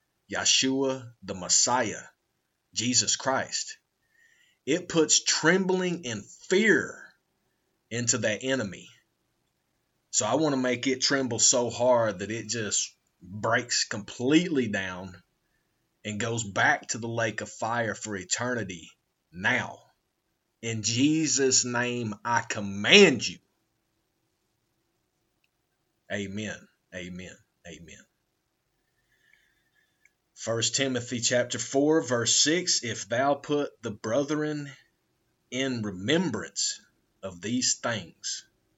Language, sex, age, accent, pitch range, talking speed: English, male, 30-49, American, 105-135 Hz, 100 wpm